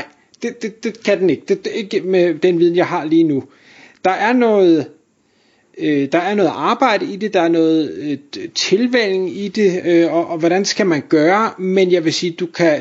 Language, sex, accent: Danish, male, native